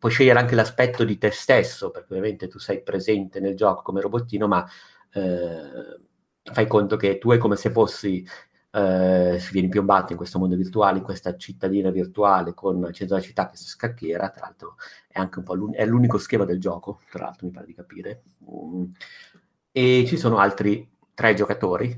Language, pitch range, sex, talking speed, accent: Italian, 90-105 Hz, male, 190 wpm, native